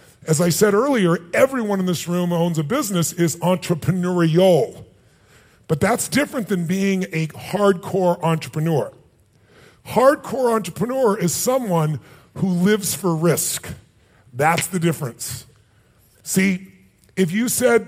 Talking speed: 125 wpm